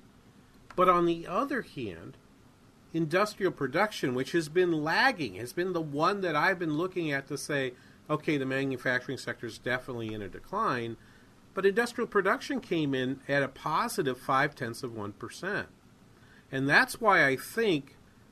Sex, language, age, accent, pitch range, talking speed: male, English, 40-59, American, 125-165 Hz, 155 wpm